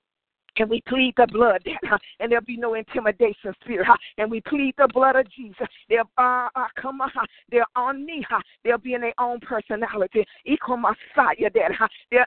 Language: English